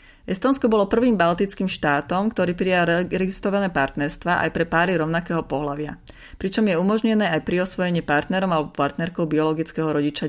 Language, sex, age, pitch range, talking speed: Slovak, female, 30-49, 160-195 Hz, 140 wpm